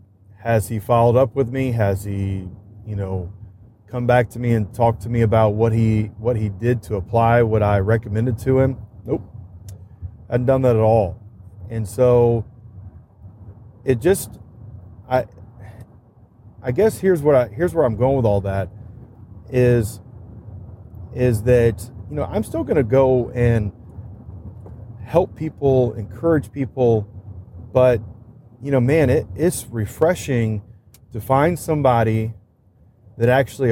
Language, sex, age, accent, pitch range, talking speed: English, male, 30-49, American, 100-125 Hz, 145 wpm